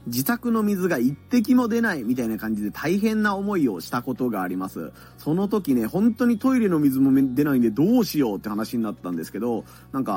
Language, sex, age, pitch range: Japanese, male, 30-49, 115-165 Hz